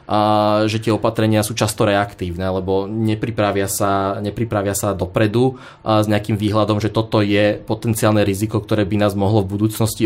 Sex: male